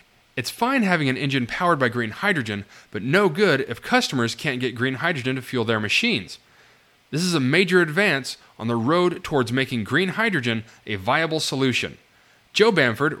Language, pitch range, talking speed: English, 120-175 Hz, 175 wpm